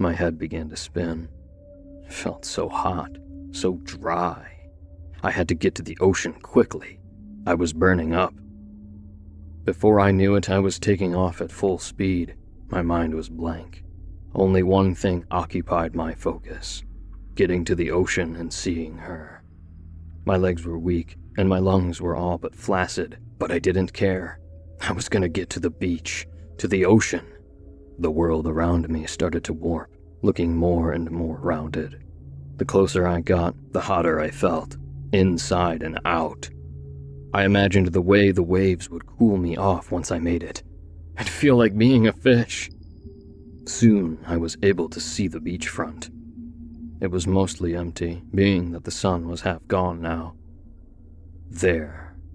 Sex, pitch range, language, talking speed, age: male, 80-95 Hz, English, 160 wpm, 30-49